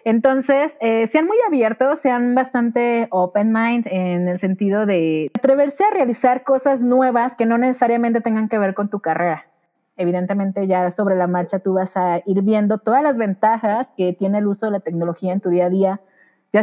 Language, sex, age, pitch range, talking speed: Spanish, female, 30-49, 180-240 Hz, 190 wpm